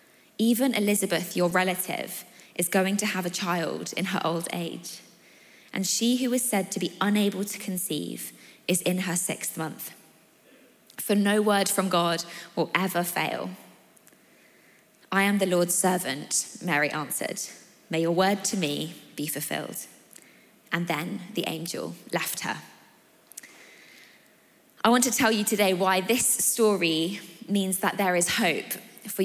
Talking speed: 150 wpm